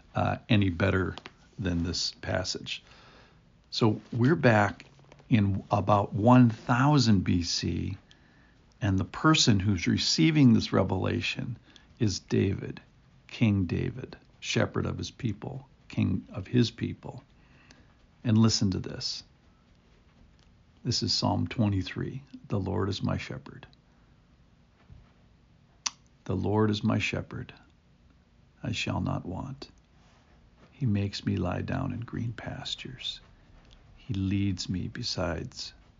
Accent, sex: American, male